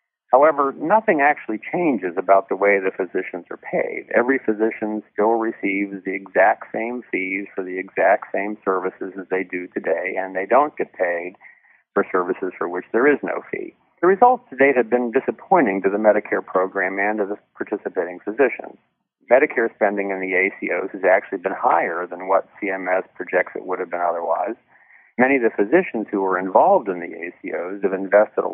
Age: 50-69